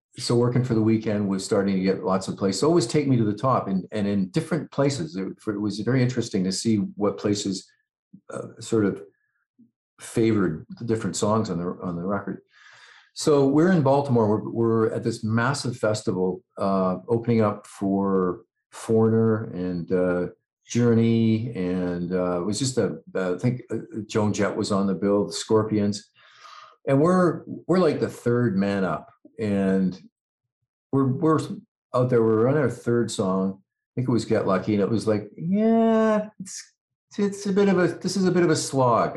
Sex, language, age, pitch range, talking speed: male, English, 50-69, 100-130 Hz, 185 wpm